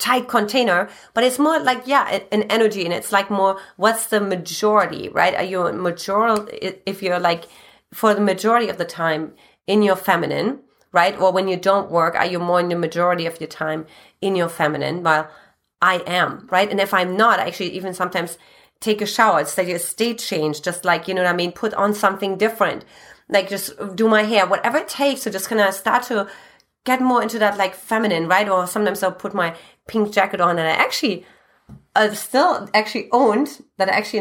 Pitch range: 180-225 Hz